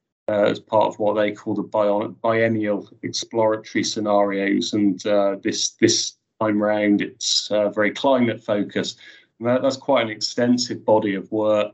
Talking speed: 155 wpm